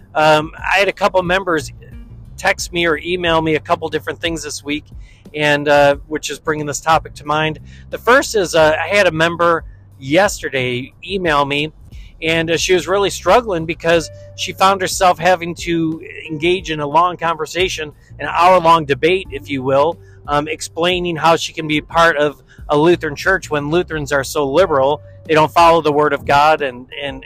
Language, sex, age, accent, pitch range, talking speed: English, male, 40-59, American, 135-170 Hz, 185 wpm